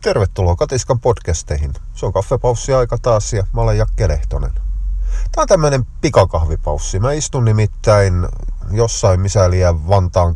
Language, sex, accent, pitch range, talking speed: Finnish, male, native, 80-105 Hz, 120 wpm